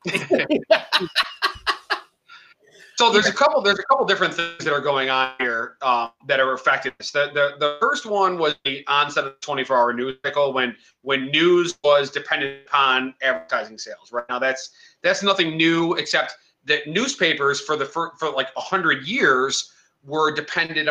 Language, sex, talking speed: English, male, 170 wpm